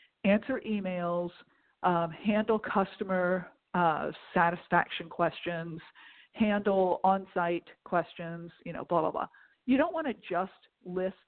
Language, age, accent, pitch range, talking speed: English, 40-59, American, 180-250 Hz, 115 wpm